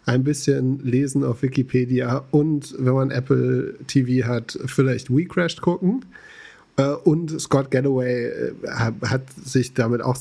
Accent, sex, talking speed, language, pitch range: German, male, 125 wpm, German, 130-160 Hz